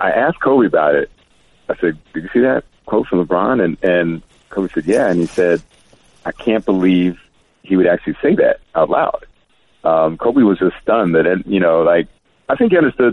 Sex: male